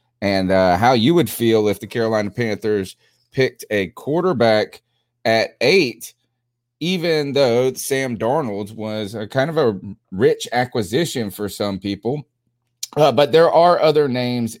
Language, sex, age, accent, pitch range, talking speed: English, male, 30-49, American, 100-125 Hz, 145 wpm